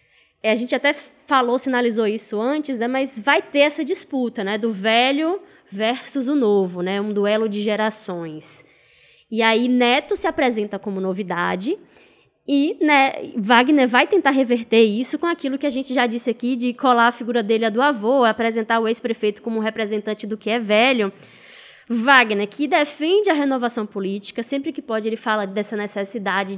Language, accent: Portuguese, Brazilian